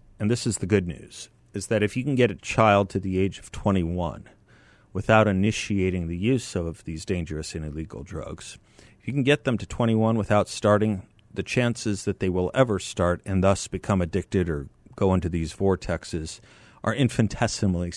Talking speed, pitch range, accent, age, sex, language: 185 wpm, 90-115 Hz, American, 40-59, male, English